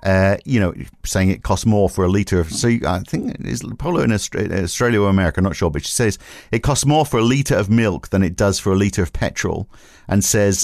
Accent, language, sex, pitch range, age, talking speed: British, English, male, 85-105 Hz, 50-69, 250 wpm